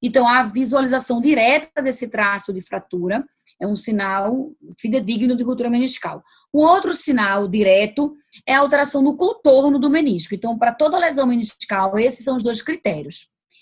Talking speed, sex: 170 wpm, female